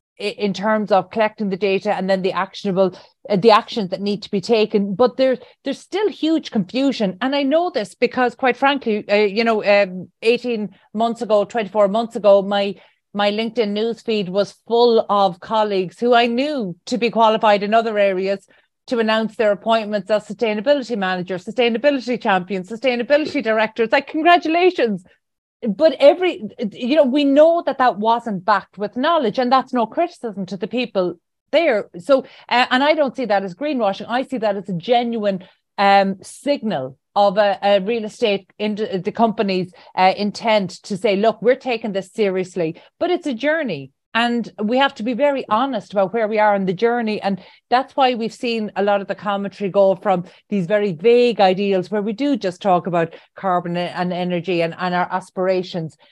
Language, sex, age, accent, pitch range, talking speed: English, female, 30-49, Irish, 195-245 Hz, 185 wpm